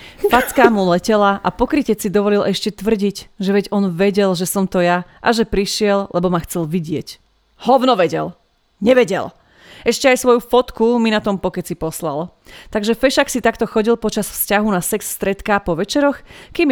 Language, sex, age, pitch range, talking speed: Slovak, female, 30-49, 180-220 Hz, 175 wpm